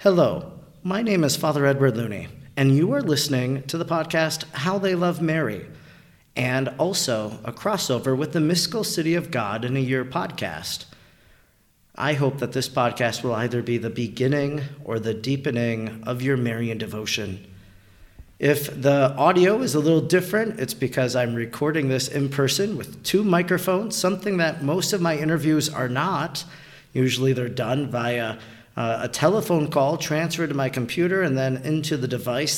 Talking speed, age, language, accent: 170 wpm, 40-59, English, American